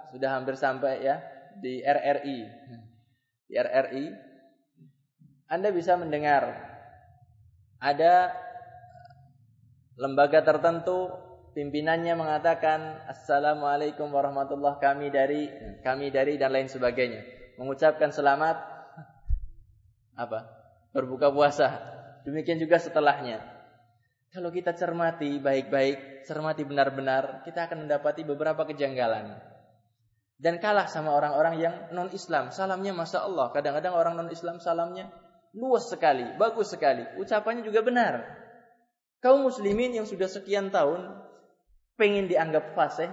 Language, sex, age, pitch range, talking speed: Malay, male, 20-39, 135-180 Hz, 105 wpm